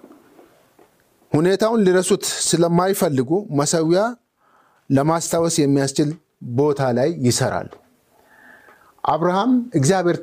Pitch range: 145-200 Hz